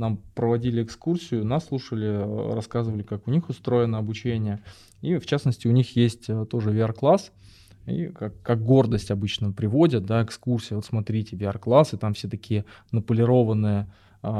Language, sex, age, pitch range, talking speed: Russian, male, 20-39, 110-135 Hz, 145 wpm